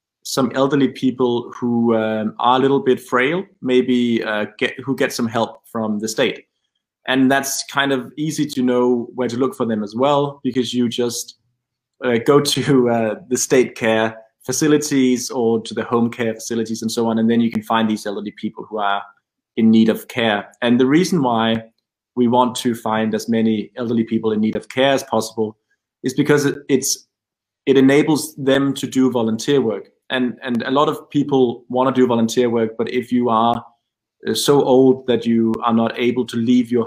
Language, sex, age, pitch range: Czech, male, 20-39, 110-130 Hz